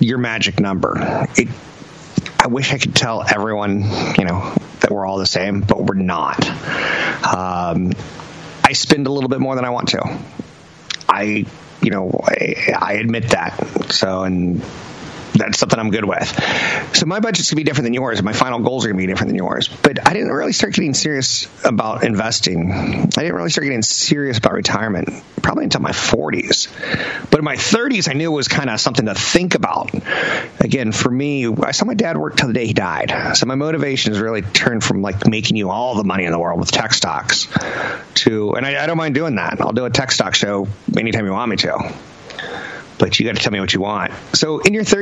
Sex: male